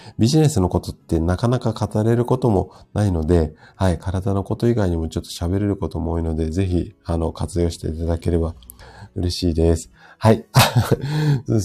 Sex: male